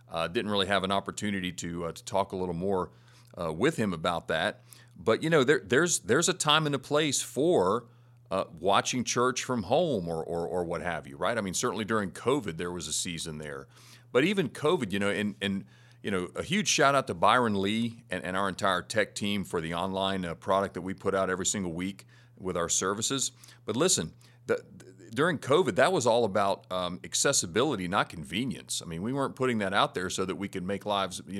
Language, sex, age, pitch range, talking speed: English, male, 40-59, 95-125 Hz, 225 wpm